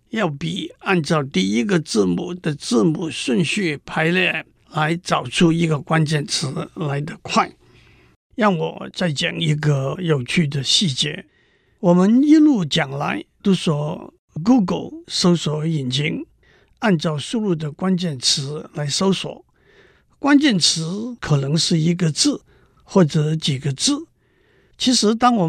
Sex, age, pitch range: male, 60-79, 155-215 Hz